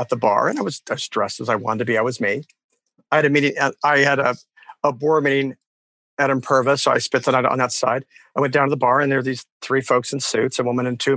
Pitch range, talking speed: 125-150 Hz, 290 wpm